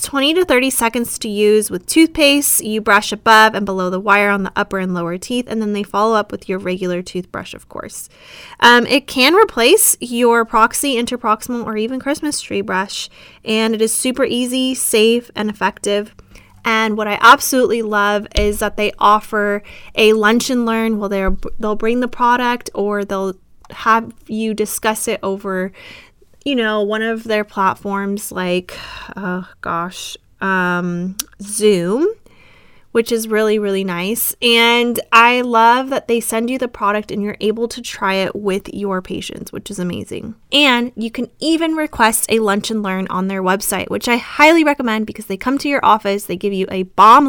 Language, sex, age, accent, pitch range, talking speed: English, female, 20-39, American, 200-250 Hz, 180 wpm